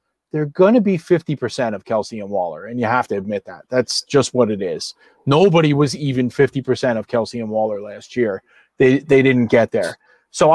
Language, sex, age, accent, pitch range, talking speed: English, male, 30-49, American, 140-190 Hz, 205 wpm